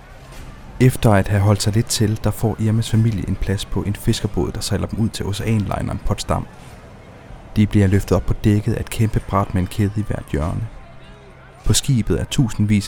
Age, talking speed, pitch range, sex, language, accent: 30-49, 195 wpm, 95-110 Hz, male, Danish, native